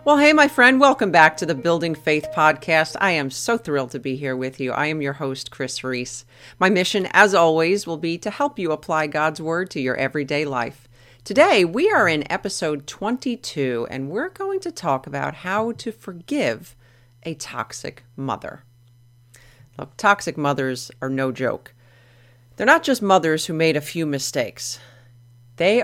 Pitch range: 130-185 Hz